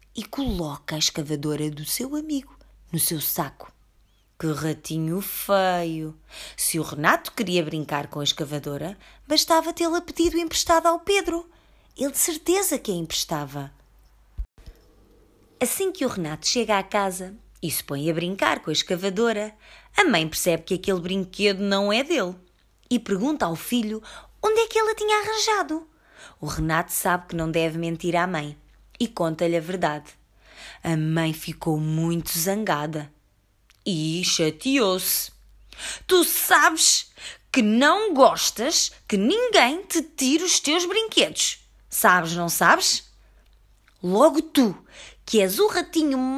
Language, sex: Portuguese, female